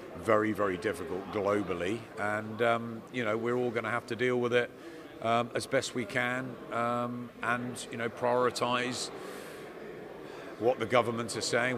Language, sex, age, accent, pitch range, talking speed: English, male, 50-69, British, 100-120 Hz, 165 wpm